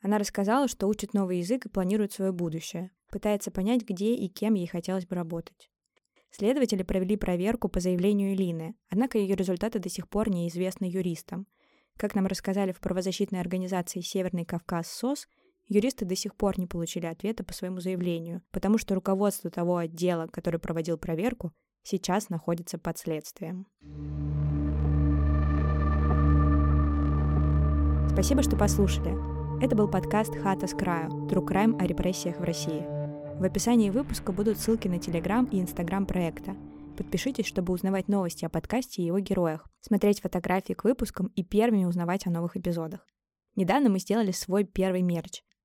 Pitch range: 170-205 Hz